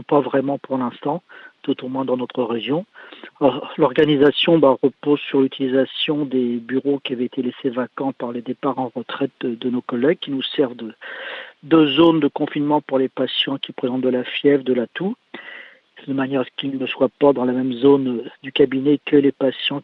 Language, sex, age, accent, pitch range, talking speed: French, male, 50-69, French, 130-145 Hz, 205 wpm